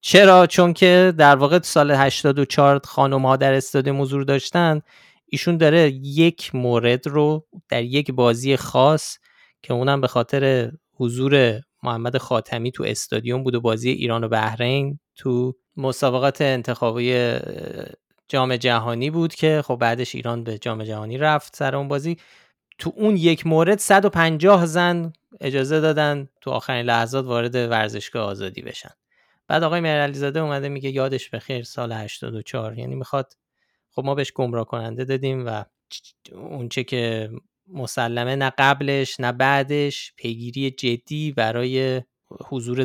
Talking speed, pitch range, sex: 145 wpm, 120-150 Hz, male